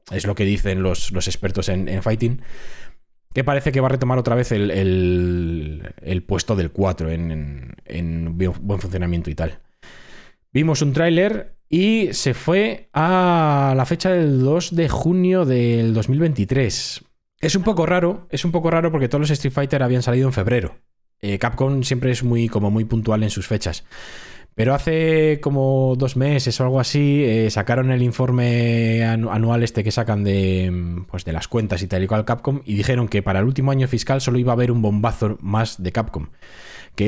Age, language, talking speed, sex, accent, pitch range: 20-39, Spanish, 185 wpm, male, Spanish, 95-135 Hz